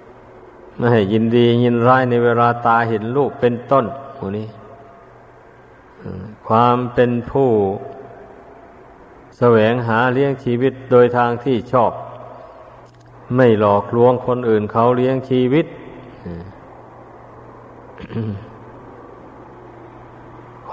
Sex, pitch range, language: male, 115-125 Hz, Thai